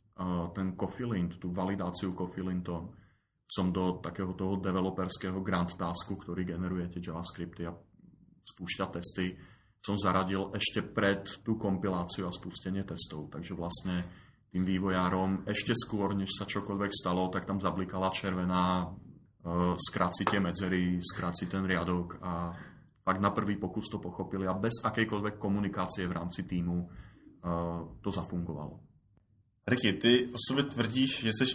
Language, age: Czech, 30-49